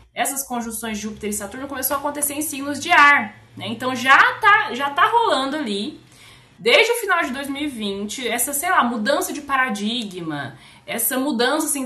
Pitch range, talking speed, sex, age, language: 235-315 Hz, 175 wpm, female, 20-39, Portuguese